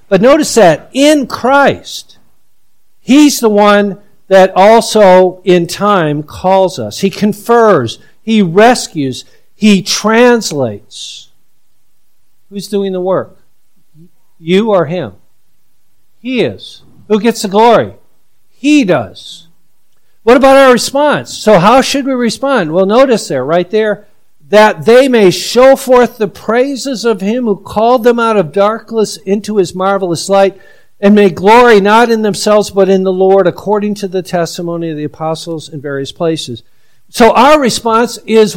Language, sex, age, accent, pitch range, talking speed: English, male, 50-69, American, 180-230 Hz, 145 wpm